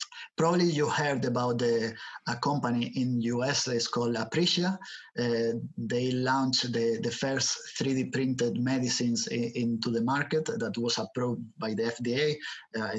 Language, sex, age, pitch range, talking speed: English, male, 30-49, 120-150 Hz, 150 wpm